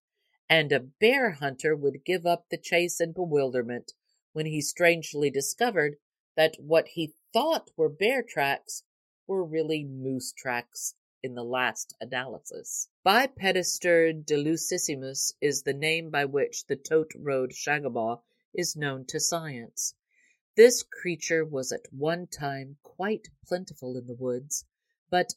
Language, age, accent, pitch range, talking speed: English, 50-69, American, 140-180 Hz, 135 wpm